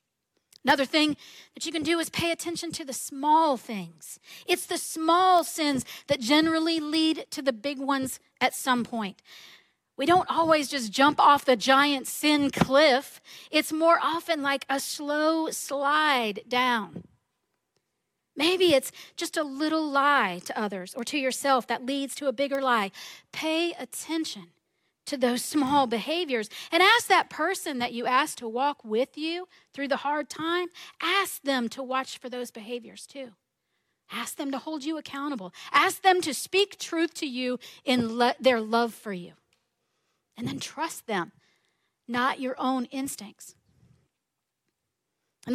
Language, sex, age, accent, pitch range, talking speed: English, female, 40-59, American, 245-320 Hz, 155 wpm